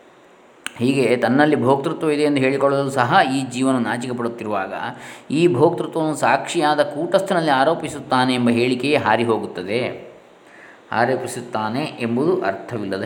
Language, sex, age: Kannada, male, 20-39